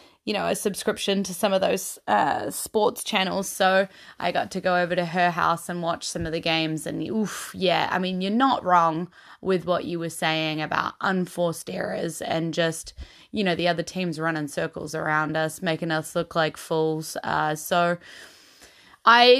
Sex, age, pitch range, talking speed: female, 10-29, 170-215 Hz, 190 wpm